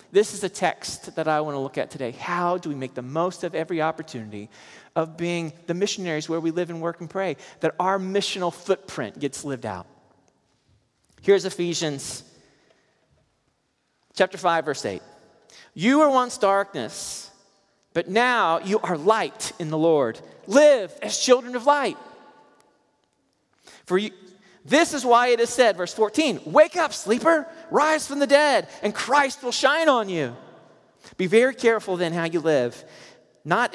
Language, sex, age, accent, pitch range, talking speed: English, male, 40-59, American, 165-235 Hz, 165 wpm